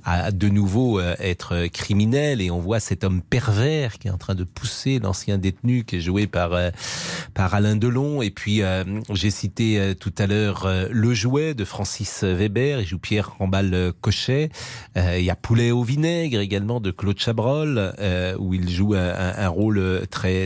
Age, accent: 40-59, French